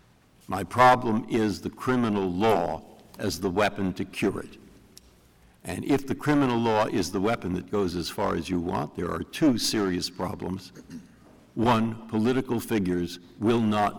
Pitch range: 90-115 Hz